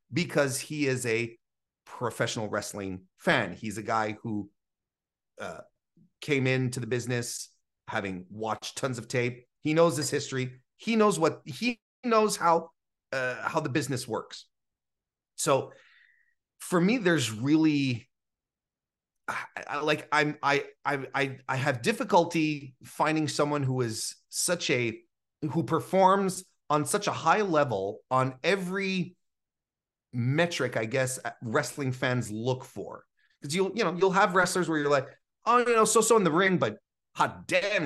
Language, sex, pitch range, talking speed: English, male, 115-170 Hz, 145 wpm